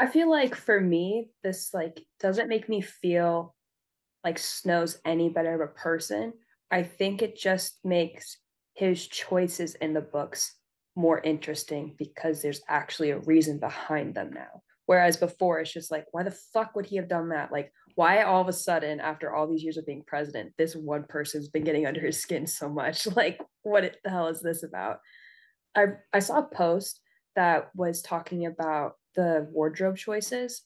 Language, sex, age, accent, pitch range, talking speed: English, female, 20-39, American, 155-185 Hz, 180 wpm